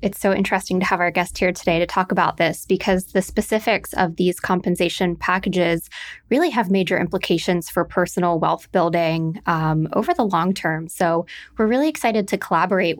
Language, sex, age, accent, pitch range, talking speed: English, female, 20-39, American, 175-200 Hz, 180 wpm